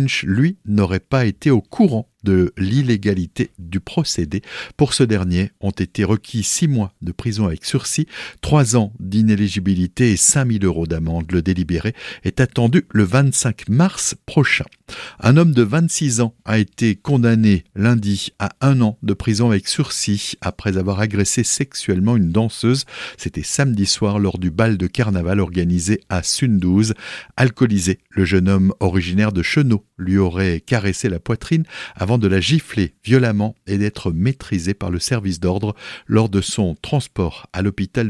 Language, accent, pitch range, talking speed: French, French, 95-125 Hz, 155 wpm